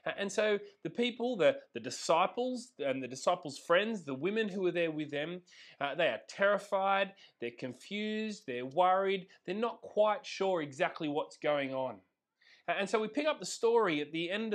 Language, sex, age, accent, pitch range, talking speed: English, male, 30-49, Australian, 165-230 Hz, 180 wpm